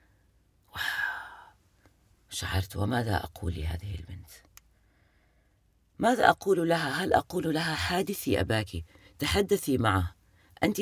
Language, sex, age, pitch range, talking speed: Arabic, female, 30-49, 95-120 Hz, 90 wpm